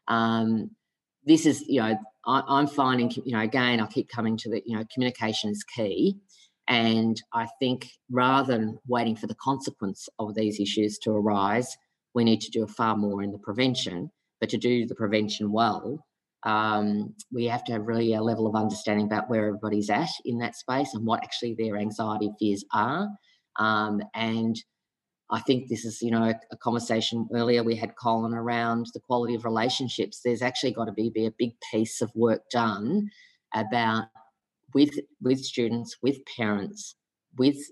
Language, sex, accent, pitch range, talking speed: English, female, Australian, 110-125 Hz, 180 wpm